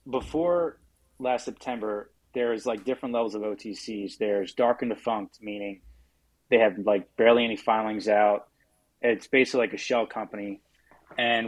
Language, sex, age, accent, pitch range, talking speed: English, male, 20-39, American, 100-125 Hz, 145 wpm